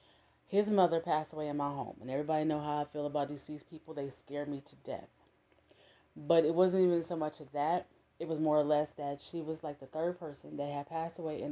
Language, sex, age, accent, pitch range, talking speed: English, female, 30-49, American, 145-170 Hz, 240 wpm